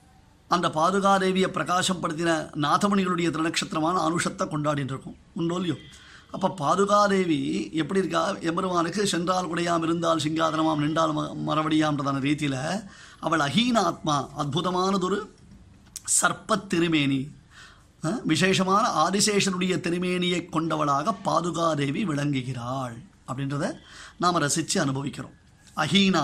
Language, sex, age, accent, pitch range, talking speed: Tamil, male, 30-49, native, 150-185 Hz, 85 wpm